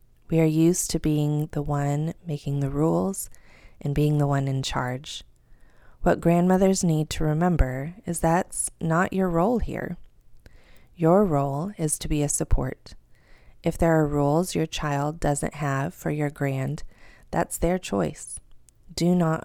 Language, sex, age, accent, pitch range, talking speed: English, female, 30-49, American, 140-170 Hz, 155 wpm